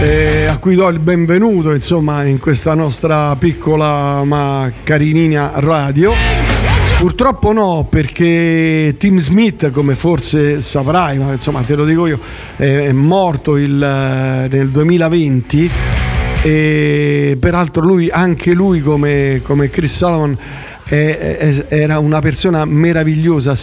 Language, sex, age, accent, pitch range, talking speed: Italian, male, 50-69, native, 140-175 Hz, 115 wpm